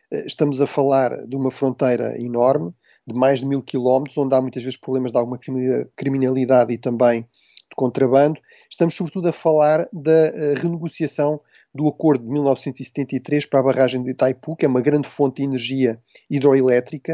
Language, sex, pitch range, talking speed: Portuguese, male, 130-155 Hz, 165 wpm